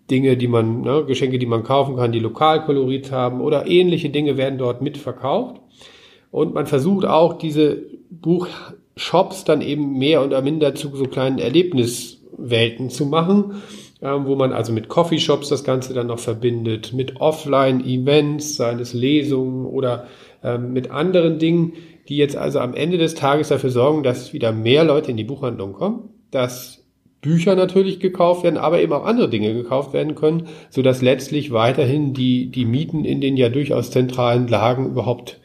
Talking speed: 175 wpm